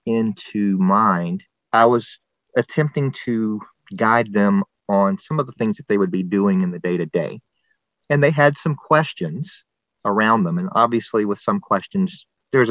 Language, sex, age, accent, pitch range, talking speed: English, male, 40-59, American, 105-160 Hz, 170 wpm